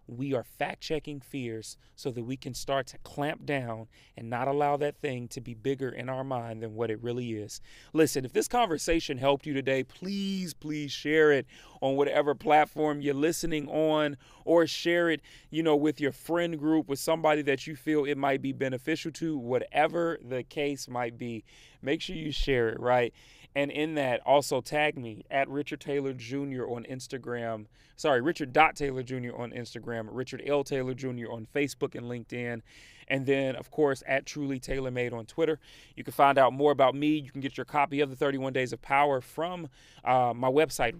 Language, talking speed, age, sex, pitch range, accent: English, 195 wpm, 30-49, male, 125-150 Hz, American